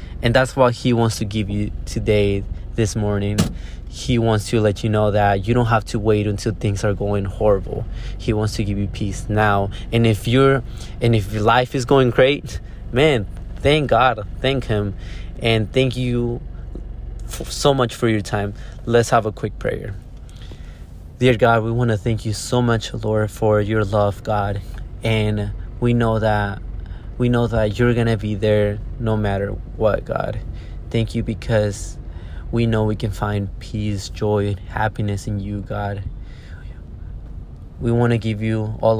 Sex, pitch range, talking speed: male, 100-115 Hz, 175 wpm